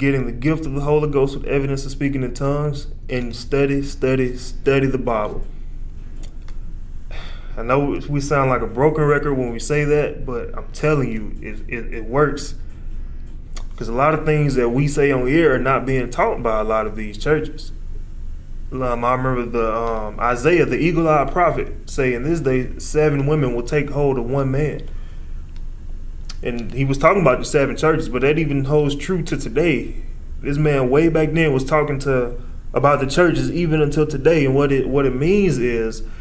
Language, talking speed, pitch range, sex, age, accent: English, 190 wpm, 120-150 Hz, male, 20-39, American